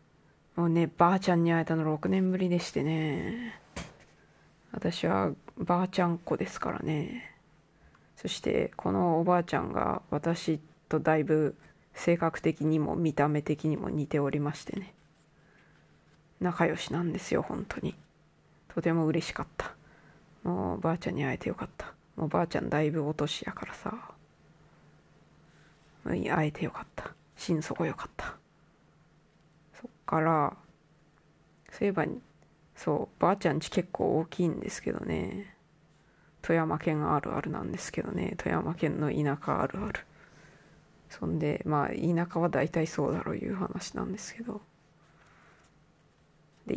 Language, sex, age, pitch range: Japanese, female, 20-39, 155-175 Hz